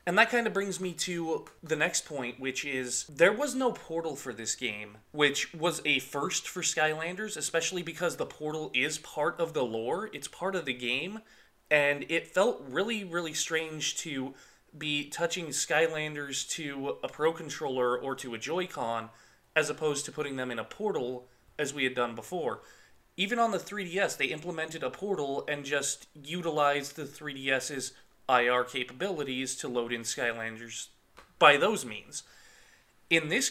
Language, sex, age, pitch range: English, male, 20-39, 130-170 Hz